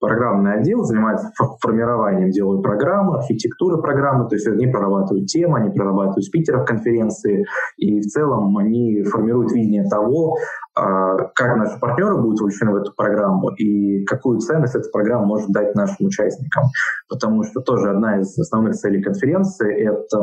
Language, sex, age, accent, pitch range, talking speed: Russian, male, 20-39, native, 100-125 Hz, 155 wpm